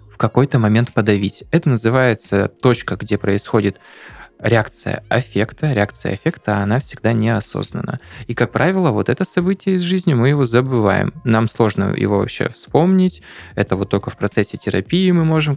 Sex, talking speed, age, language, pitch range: male, 155 wpm, 20-39, Russian, 105-130 Hz